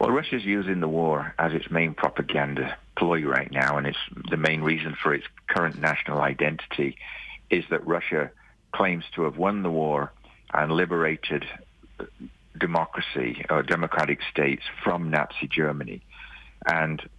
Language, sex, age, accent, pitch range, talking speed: English, male, 50-69, British, 75-85 Hz, 145 wpm